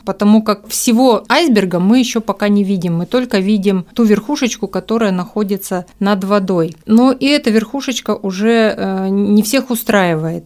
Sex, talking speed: female, 150 wpm